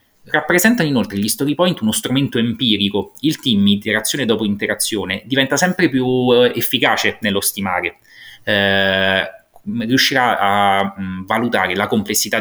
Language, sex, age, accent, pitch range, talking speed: Italian, male, 30-49, native, 100-120 Hz, 120 wpm